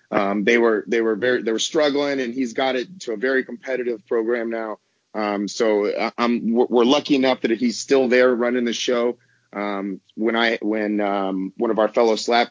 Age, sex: 30-49, male